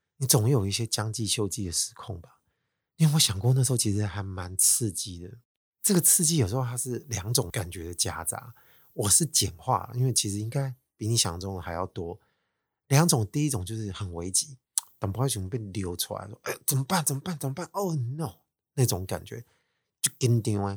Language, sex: Chinese, male